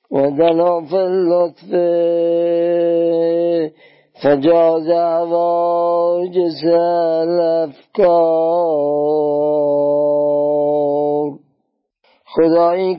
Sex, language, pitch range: male, Persian, 165-185 Hz